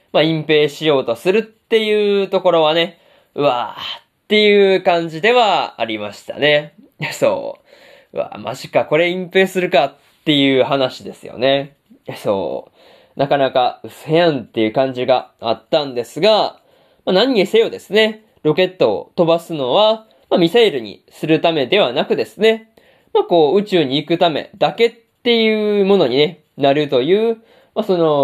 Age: 20-39